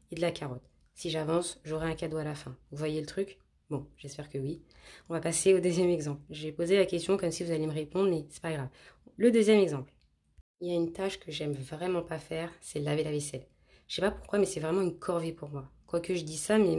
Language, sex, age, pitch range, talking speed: French, female, 20-39, 150-180 Hz, 260 wpm